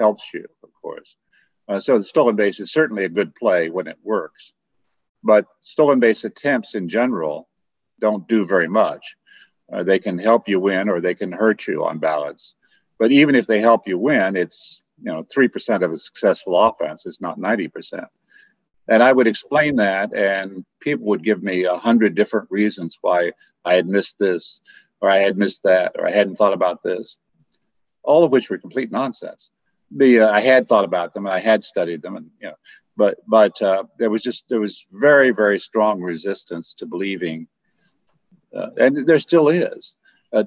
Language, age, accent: English, 50-69, American